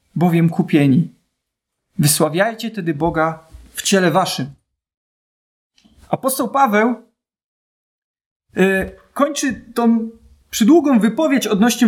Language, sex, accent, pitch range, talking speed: Polish, male, native, 175-245 Hz, 75 wpm